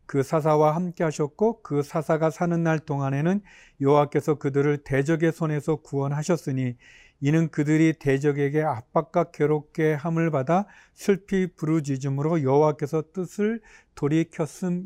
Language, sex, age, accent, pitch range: Korean, male, 40-59, native, 140-175 Hz